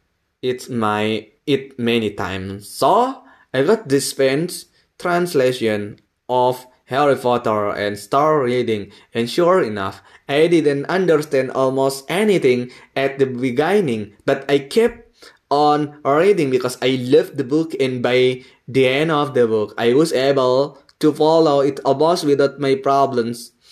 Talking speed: 140 wpm